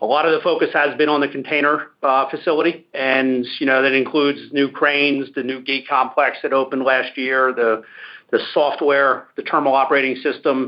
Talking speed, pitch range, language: 190 wpm, 135-155 Hz, English